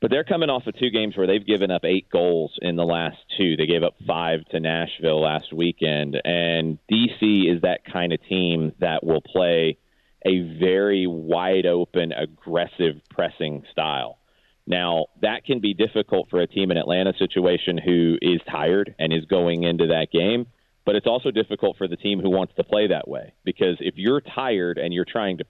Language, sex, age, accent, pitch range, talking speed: English, male, 30-49, American, 85-105 Hz, 195 wpm